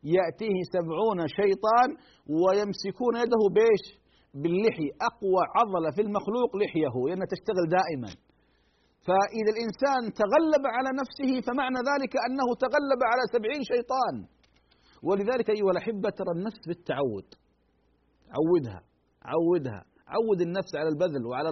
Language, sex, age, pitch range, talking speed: Arabic, male, 40-59, 175-240 Hz, 110 wpm